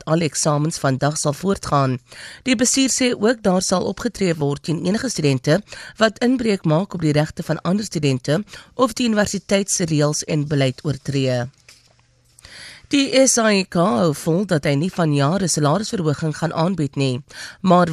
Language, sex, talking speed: English, female, 155 wpm